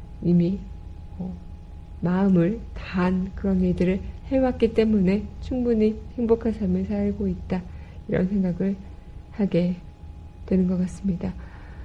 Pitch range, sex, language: 175-215 Hz, female, Korean